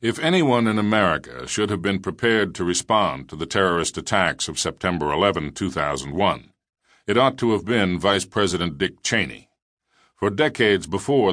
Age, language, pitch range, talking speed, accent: 50-69, English, 90-115 Hz, 160 wpm, American